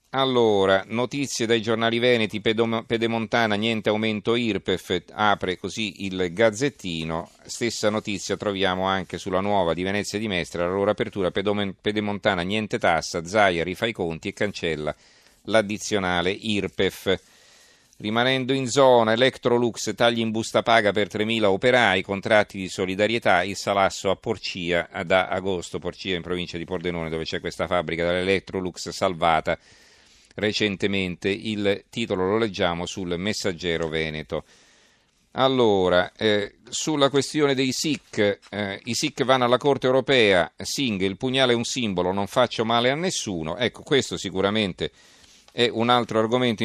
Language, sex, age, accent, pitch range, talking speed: Italian, male, 40-59, native, 95-115 Hz, 140 wpm